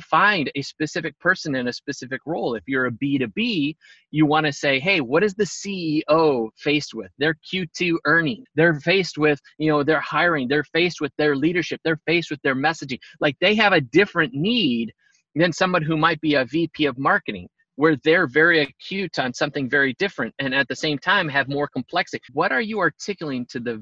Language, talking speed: English, 200 wpm